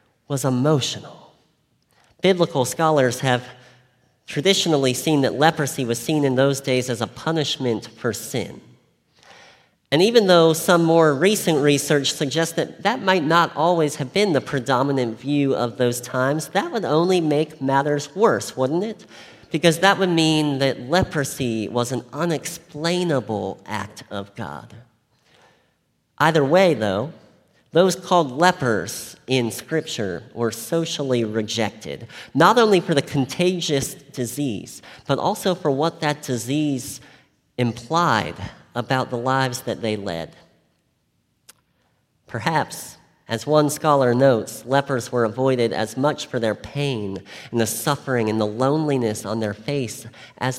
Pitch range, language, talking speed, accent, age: 120-160 Hz, English, 135 wpm, American, 40-59